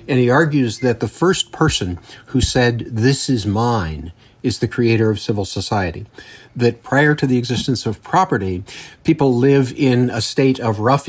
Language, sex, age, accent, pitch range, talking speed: English, male, 50-69, American, 110-130 Hz, 175 wpm